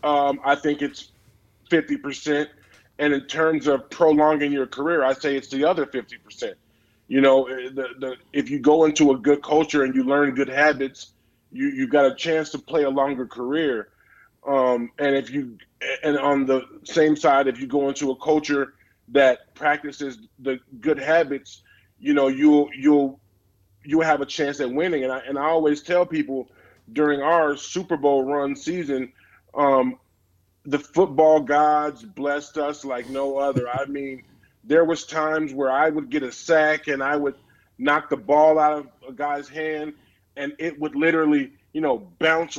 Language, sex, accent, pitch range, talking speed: English, male, American, 135-155 Hz, 180 wpm